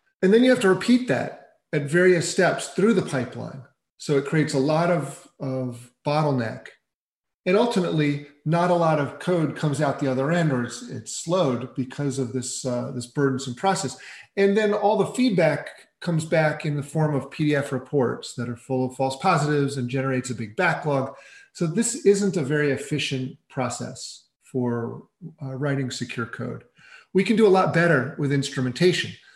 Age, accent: 40-59, American